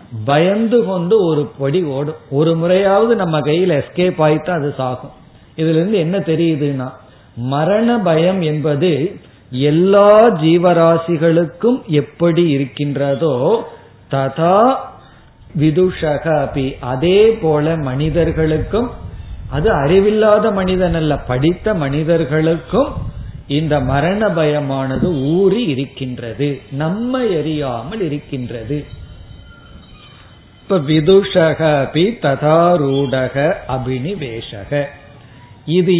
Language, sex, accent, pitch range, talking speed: Tamil, male, native, 130-180 Hz, 80 wpm